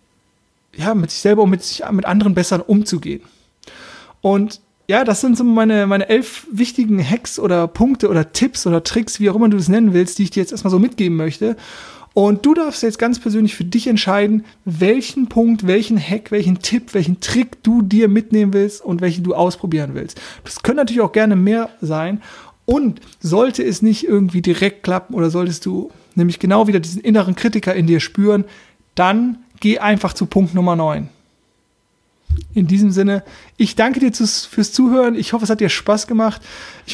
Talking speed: 190 wpm